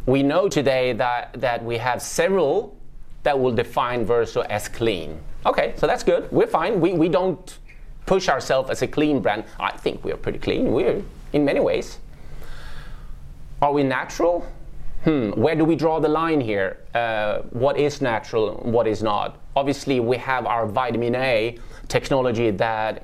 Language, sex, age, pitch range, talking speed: English, male, 30-49, 115-155 Hz, 170 wpm